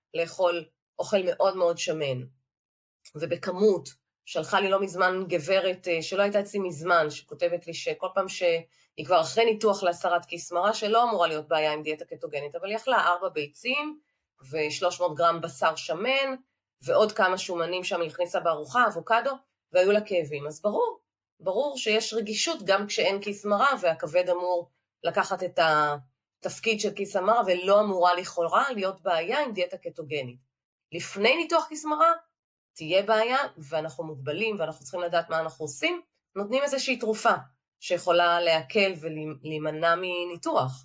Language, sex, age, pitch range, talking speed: Hebrew, female, 30-49, 160-210 Hz, 145 wpm